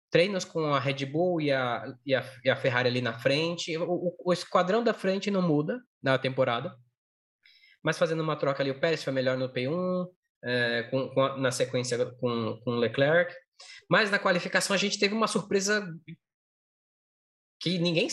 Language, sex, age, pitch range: Portuguese, male, 20-39, 135-200 Hz